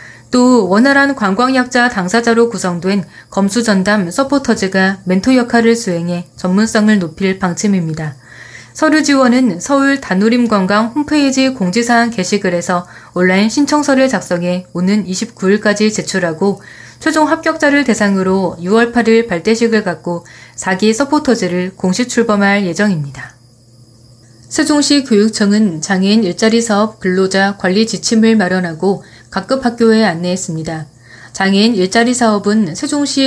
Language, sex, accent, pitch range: Korean, female, native, 185-235 Hz